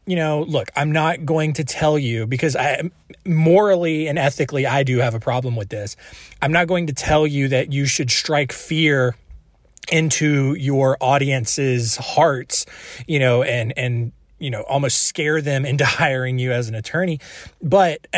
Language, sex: English, male